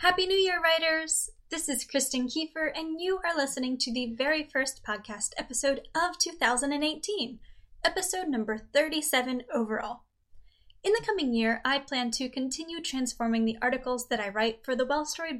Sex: female